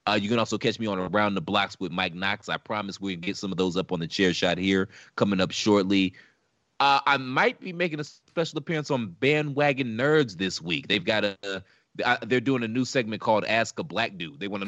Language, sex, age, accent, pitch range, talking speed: English, male, 20-39, American, 95-125 Hz, 235 wpm